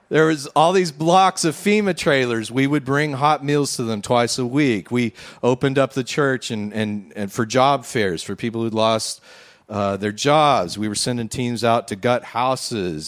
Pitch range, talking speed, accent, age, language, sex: 115-155 Hz, 200 wpm, American, 40-59, English, male